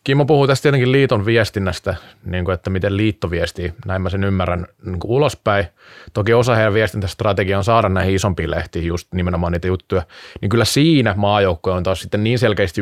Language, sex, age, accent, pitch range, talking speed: Finnish, male, 20-39, native, 90-110 Hz, 185 wpm